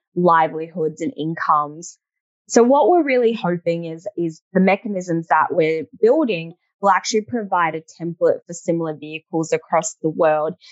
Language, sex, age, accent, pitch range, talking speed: English, female, 20-39, Australian, 165-205 Hz, 145 wpm